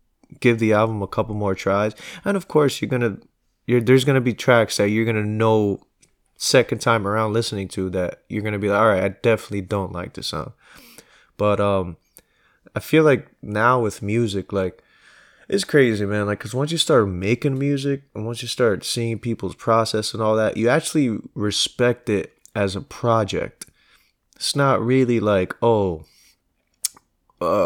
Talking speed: 175 wpm